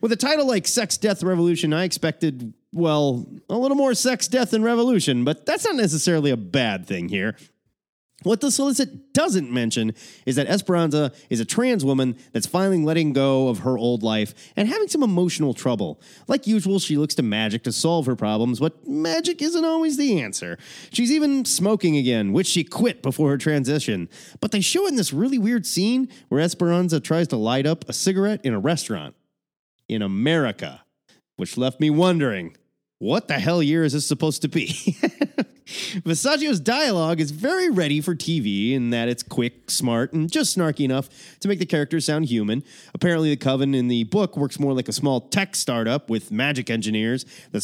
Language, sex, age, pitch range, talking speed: English, male, 30-49, 125-210 Hz, 190 wpm